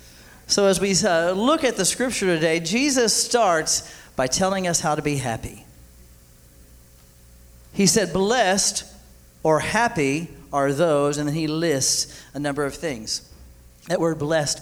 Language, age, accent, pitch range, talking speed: English, 40-59, American, 130-185 Hz, 150 wpm